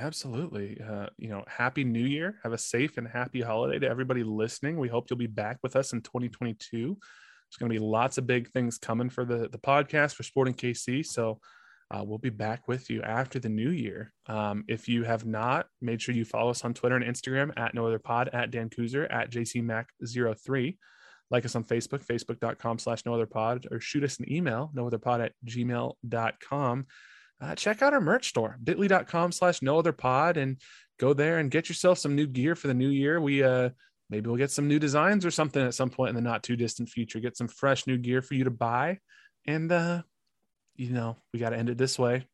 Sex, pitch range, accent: male, 115-140 Hz, American